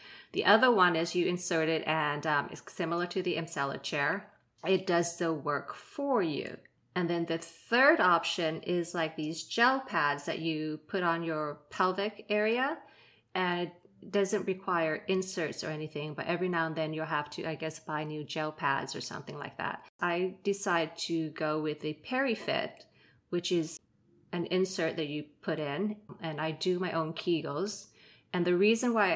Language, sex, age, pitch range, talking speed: English, female, 30-49, 155-185 Hz, 180 wpm